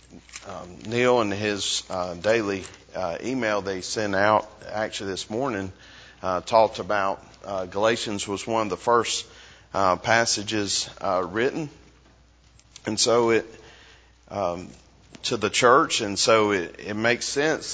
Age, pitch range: 40-59, 95-120 Hz